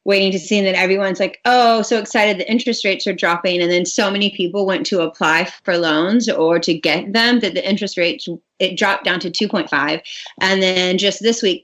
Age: 30-49